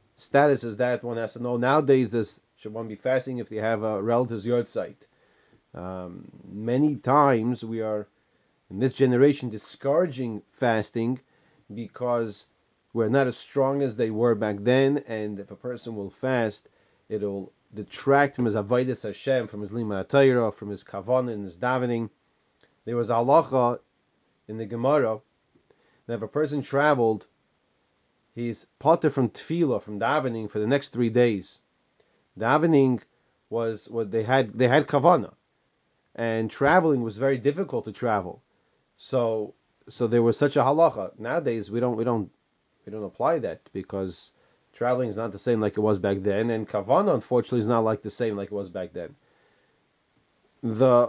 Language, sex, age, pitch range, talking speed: English, male, 30-49, 110-135 Hz, 160 wpm